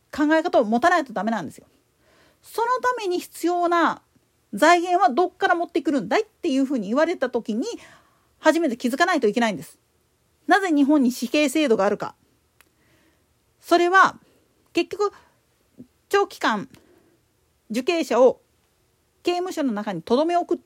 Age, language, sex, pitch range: 40-59, Japanese, female, 240-360 Hz